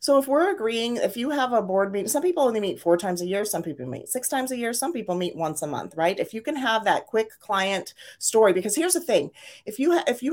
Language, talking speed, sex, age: English, 275 wpm, female, 30-49